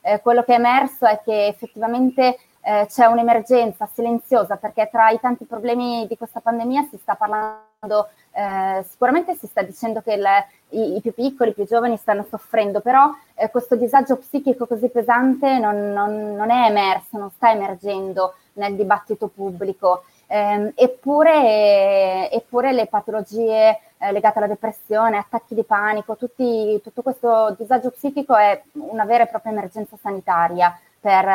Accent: native